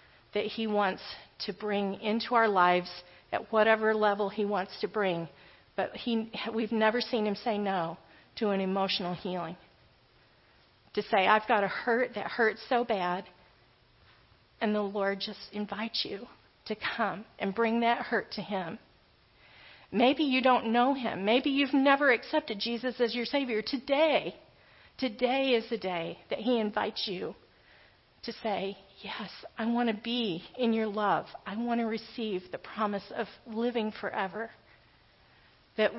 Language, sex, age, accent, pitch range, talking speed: English, female, 40-59, American, 200-235 Hz, 155 wpm